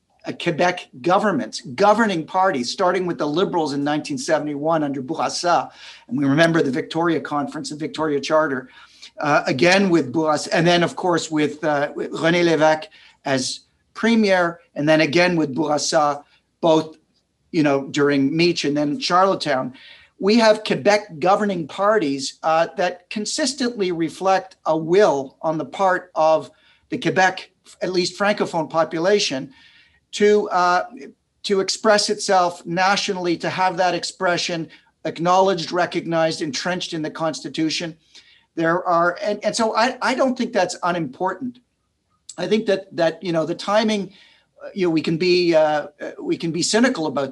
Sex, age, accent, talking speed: male, 50-69, American, 150 wpm